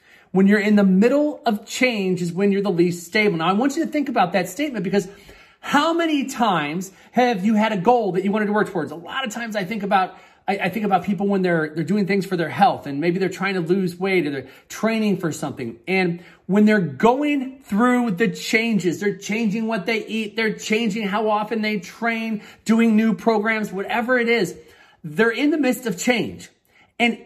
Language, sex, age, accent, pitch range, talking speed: English, male, 30-49, American, 190-245 Hz, 220 wpm